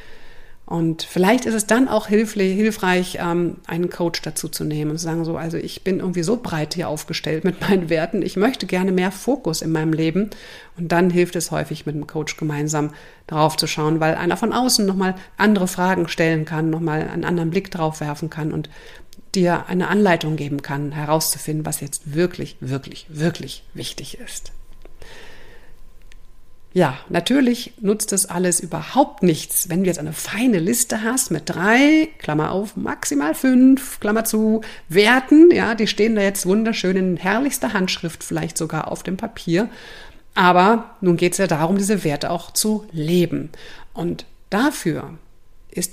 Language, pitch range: German, 160-215 Hz